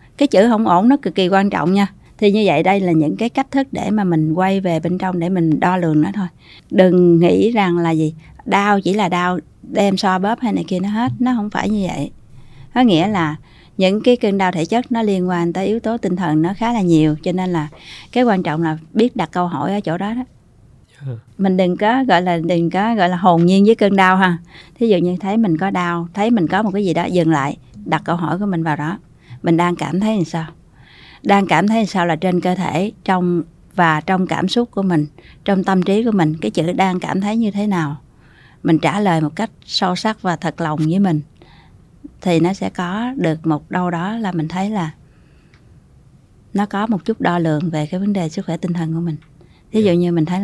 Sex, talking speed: female, 250 wpm